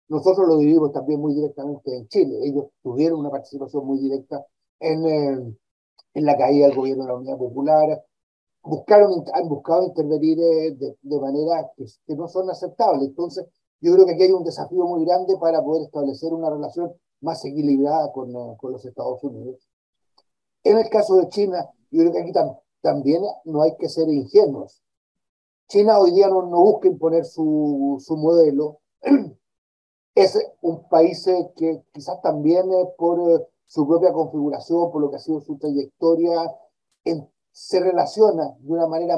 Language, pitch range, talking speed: Portuguese, 150-180 Hz, 165 wpm